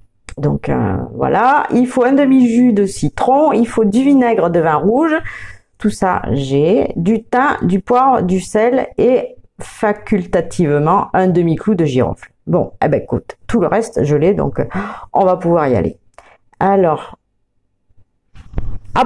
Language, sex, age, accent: French, female, 40-59, French